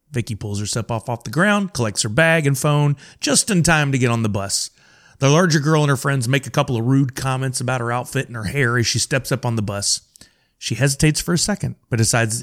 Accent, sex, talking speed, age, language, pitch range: American, male, 250 wpm, 30-49, English, 120-155 Hz